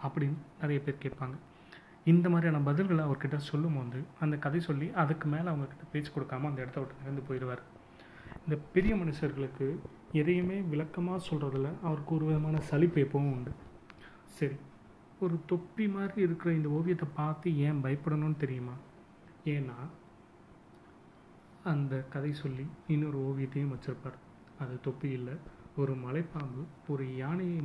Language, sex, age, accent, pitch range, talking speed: Tamil, male, 30-49, native, 135-160 Hz, 125 wpm